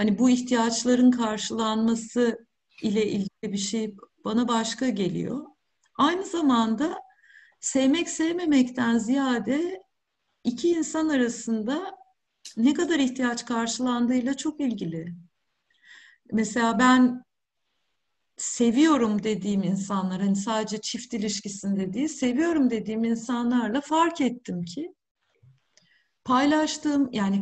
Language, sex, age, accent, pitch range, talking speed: Turkish, female, 50-69, native, 215-280 Hz, 95 wpm